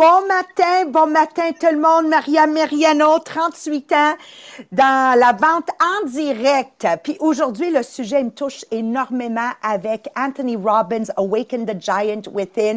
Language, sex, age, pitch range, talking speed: English, female, 50-69, 210-290 Hz, 140 wpm